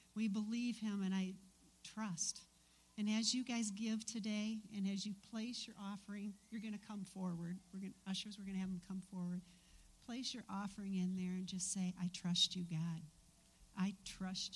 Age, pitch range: 50-69, 180-215 Hz